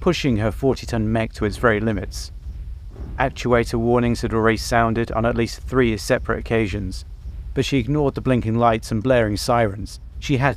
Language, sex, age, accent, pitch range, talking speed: English, male, 30-49, British, 100-130 Hz, 170 wpm